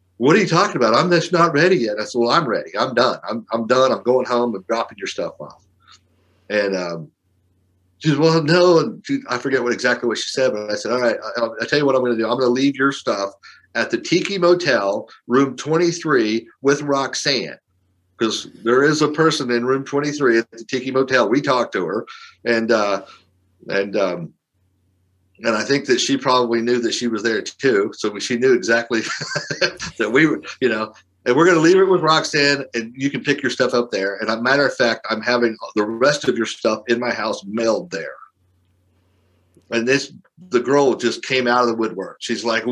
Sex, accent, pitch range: male, American, 105-140 Hz